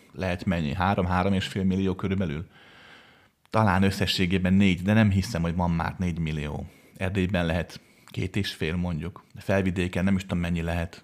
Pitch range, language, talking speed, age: 85-100 Hz, Hungarian, 150 wpm, 30-49